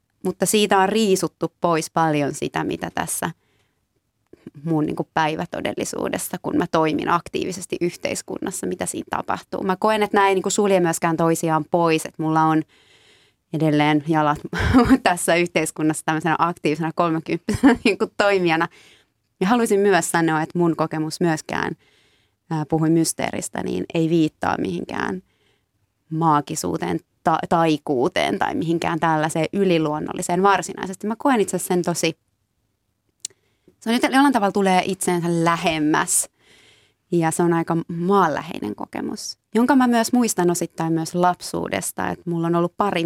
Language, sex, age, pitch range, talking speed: Finnish, female, 20-39, 160-195 Hz, 130 wpm